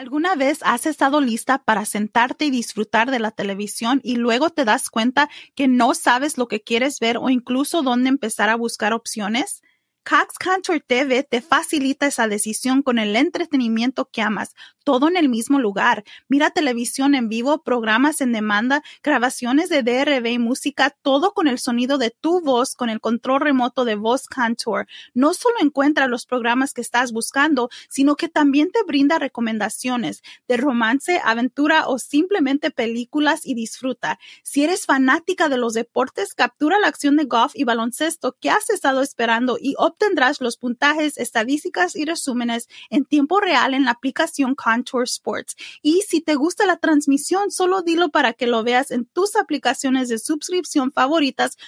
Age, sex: 30-49, female